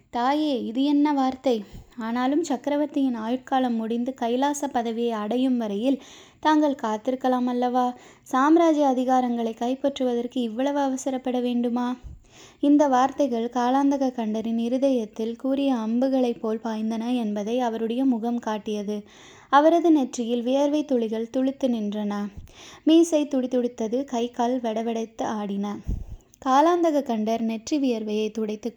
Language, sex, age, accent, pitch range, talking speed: Tamil, female, 20-39, native, 230-280 Hz, 105 wpm